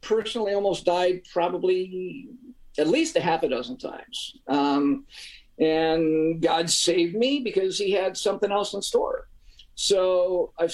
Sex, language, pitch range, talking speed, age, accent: male, English, 160-240 Hz, 140 wpm, 50-69, American